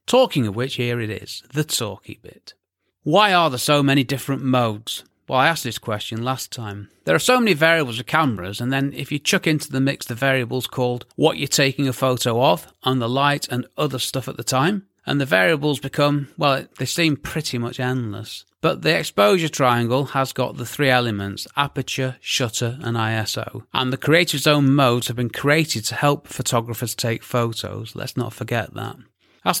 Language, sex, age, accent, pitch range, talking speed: English, male, 30-49, British, 115-140 Hz, 195 wpm